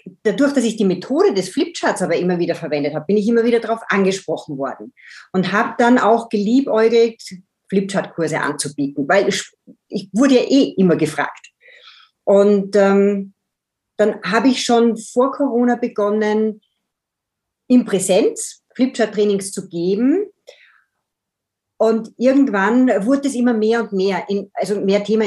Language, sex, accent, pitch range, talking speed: German, female, German, 195-240 Hz, 140 wpm